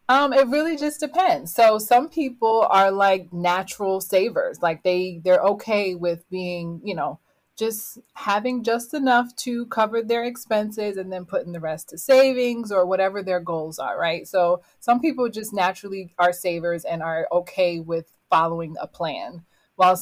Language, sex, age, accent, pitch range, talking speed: English, female, 20-39, American, 175-220 Hz, 170 wpm